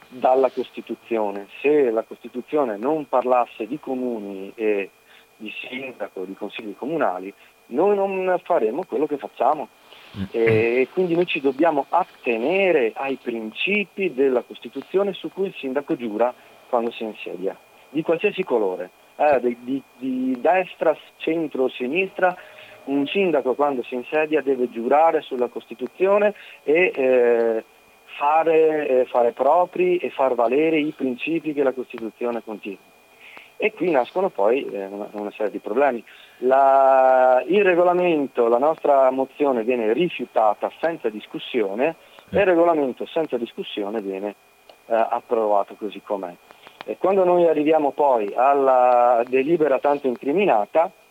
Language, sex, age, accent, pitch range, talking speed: Italian, male, 40-59, native, 120-165 Hz, 125 wpm